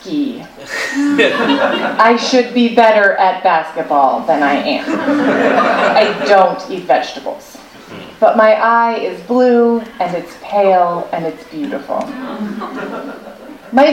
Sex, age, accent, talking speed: female, 30-49, American, 110 wpm